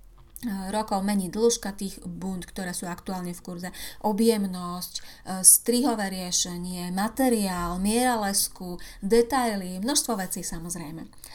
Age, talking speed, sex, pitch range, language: 30-49, 105 wpm, female, 185-235 Hz, Slovak